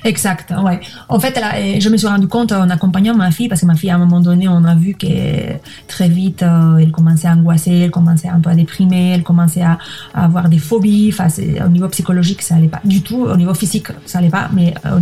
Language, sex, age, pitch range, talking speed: French, female, 20-39, 170-195 Hz, 250 wpm